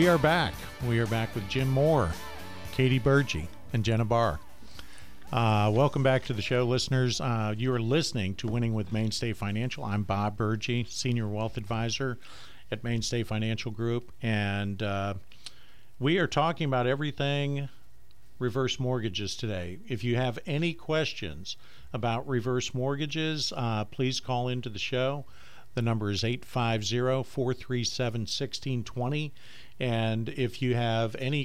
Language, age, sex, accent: English, 50-69, male, American